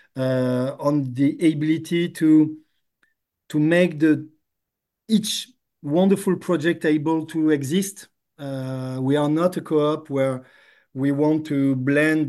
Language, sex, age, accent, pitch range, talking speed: English, male, 50-69, French, 135-155 Hz, 120 wpm